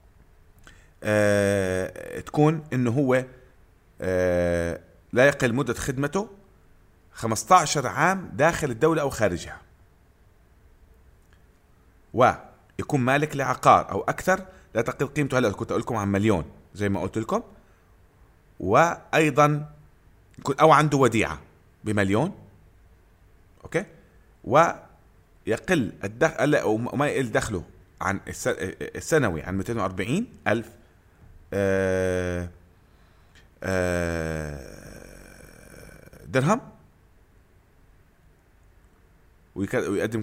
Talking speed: 80 wpm